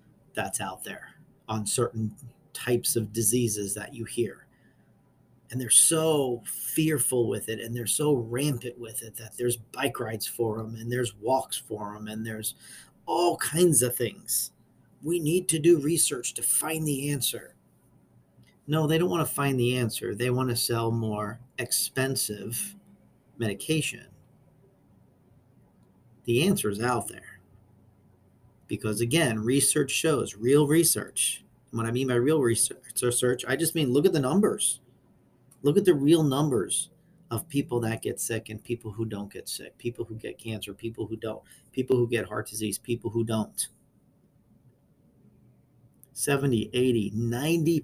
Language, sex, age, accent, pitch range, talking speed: English, male, 40-59, American, 110-140 Hz, 150 wpm